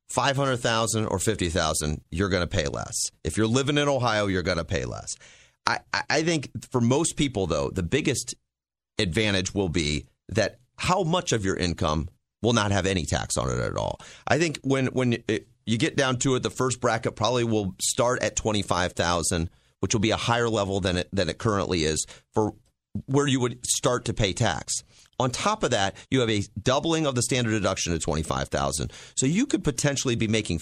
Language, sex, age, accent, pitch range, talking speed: English, male, 40-59, American, 100-135 Hz, 215 wpm